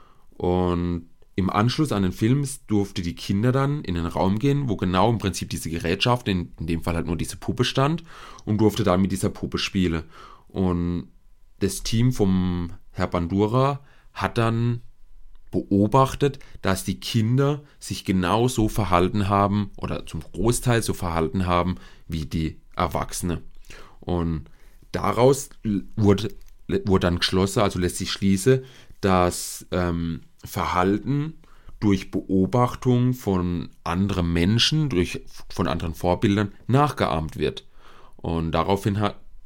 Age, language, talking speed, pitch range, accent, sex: 30-49, German, 135 wpm, 90-110 Hz, German, male